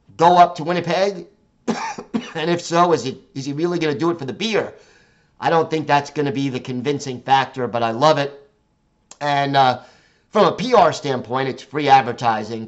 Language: English